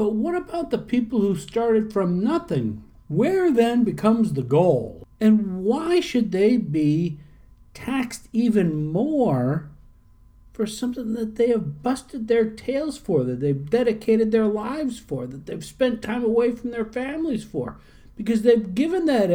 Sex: male